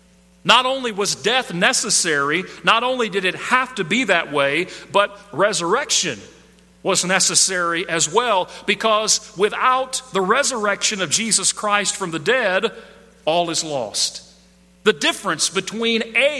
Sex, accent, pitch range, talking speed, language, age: male, American, 170-215 Hz, 135 wpm, English, 40-59